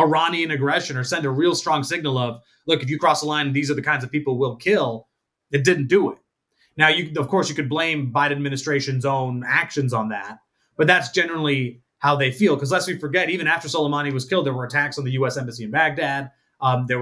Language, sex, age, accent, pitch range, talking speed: English, male, 30-49, American, 135-175 Hz, 235 wpm